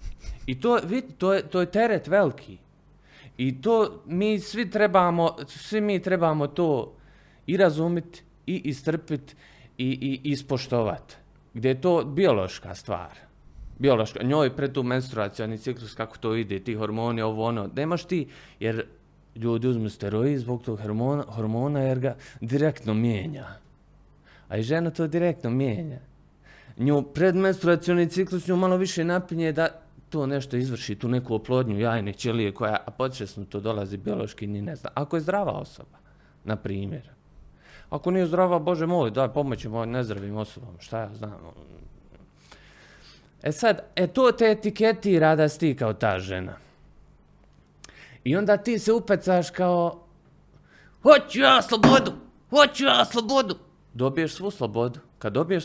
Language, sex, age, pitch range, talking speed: Croatian, male, 30-49, 115-180 Hz, 140 wpm